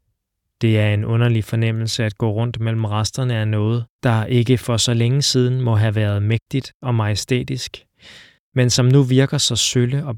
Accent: native